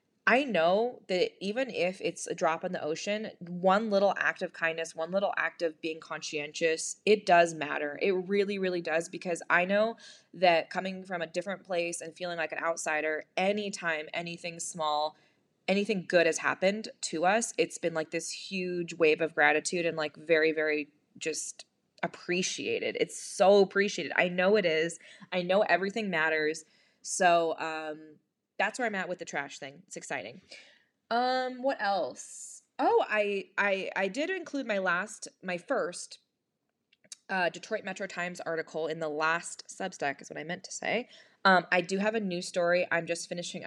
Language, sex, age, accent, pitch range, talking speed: English, female, 20-39, American, 160-200 Hz, 175 wpm